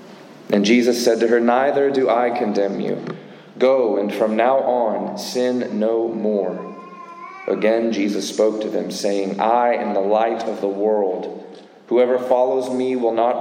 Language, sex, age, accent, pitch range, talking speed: English, male, 30-49, American, 100-115 Hz, 160 wpm